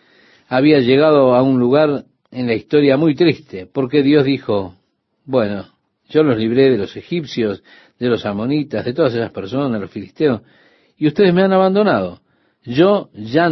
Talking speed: 165 wpm